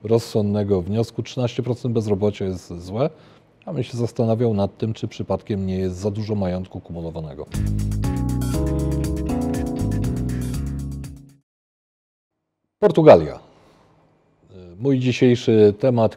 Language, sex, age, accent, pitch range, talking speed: Polish, male, 40-59, native, 90-120 Hz, 90 wpm